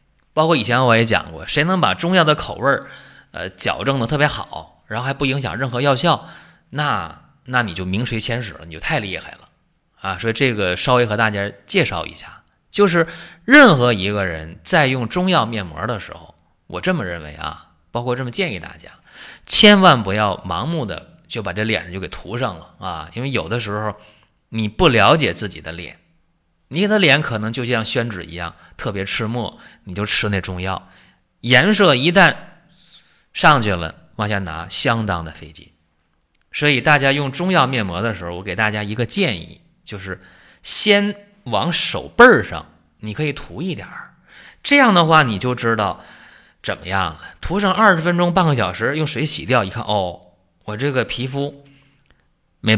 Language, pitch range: Chinese, 100-150 Hz